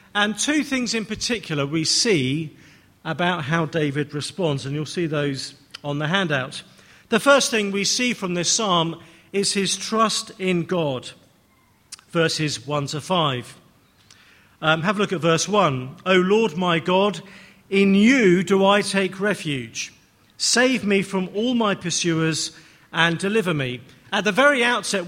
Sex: male